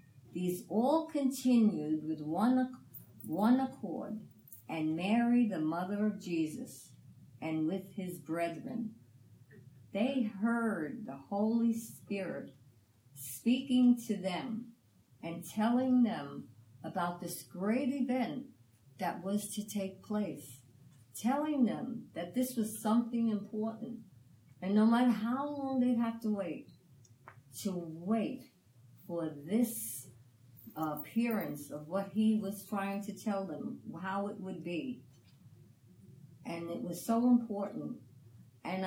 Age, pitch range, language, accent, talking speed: 50-69, 155-225 Hz, English, American, 115 wpm